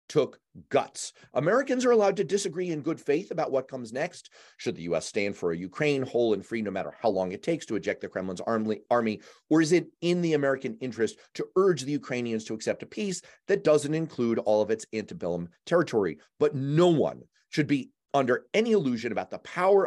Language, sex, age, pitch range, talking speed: English, male, 40-59, 110-165 Hz, 210 wpm